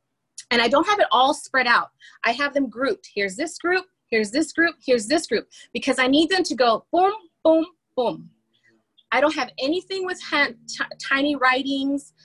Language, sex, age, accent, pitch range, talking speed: English, female, 30-49, American, 215-300 Hz, 180 wpm